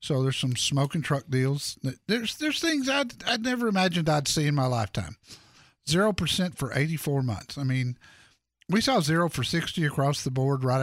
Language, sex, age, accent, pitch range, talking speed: English, male, 50-69, American, 130-165 Hz, 195 wpm